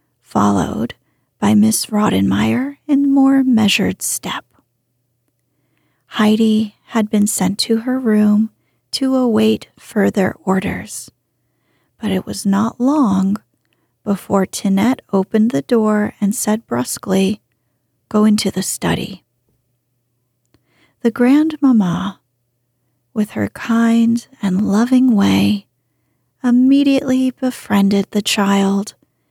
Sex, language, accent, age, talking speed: female, English, American, 40-59, 100 wpm